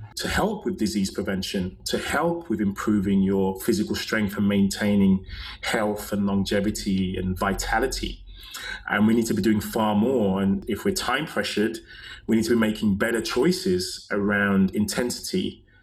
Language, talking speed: English, 155 wpm